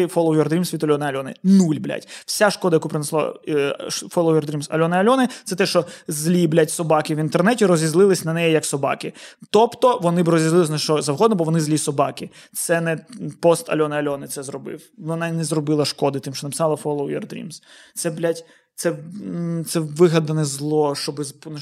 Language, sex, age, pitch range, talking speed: Ukrainian, male, 20-39, 155-195 Hz, 185 wpm